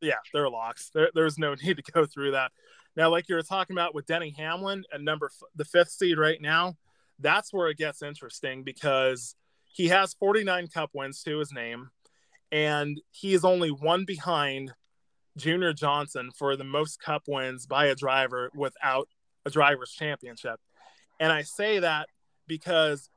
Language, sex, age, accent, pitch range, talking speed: English, male, 20-39, American, 140-165 Hz, 180 wpm